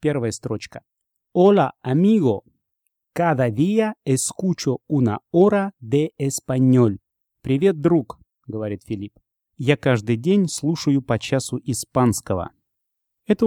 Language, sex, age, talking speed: Russian, male, 30-49, 105 wpm